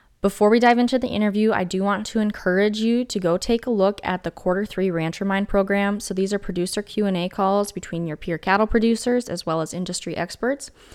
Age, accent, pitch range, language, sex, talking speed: 10-29, American, 175-225 Hz, English, female, 220 wpm